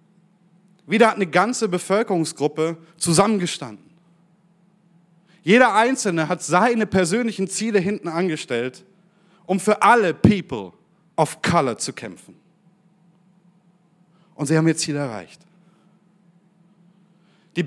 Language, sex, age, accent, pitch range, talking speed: German, male, 30-49, German, 170-195 Hz, 100 wpm